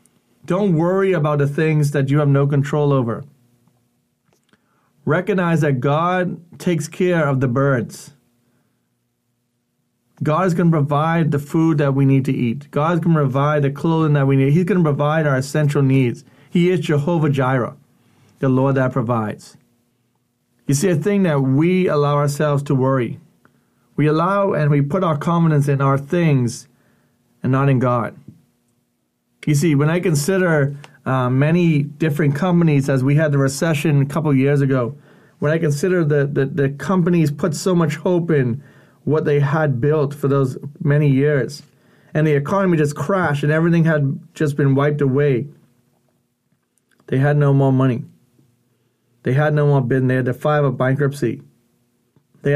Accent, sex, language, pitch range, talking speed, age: American, male, English, 130-155 Hz, 170 wpm, 30-49